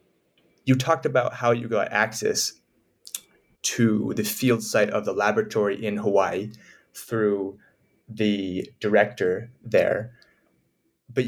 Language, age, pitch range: English, 20-39, 110-135 Hz